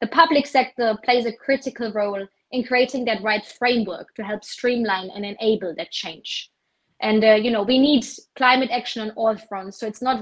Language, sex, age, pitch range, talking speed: English, female, 20-39, 220-255 Hz, 195 wpm